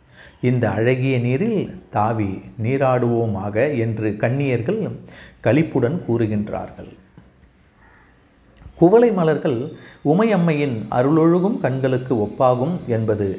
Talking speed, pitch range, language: 70 wpm, 110-155 Hz, Tamil